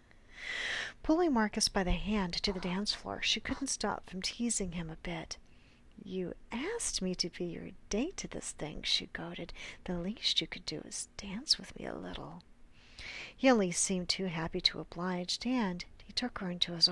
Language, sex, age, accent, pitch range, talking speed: English, female, 40-59, American, 175-210 Hz, 190 wpm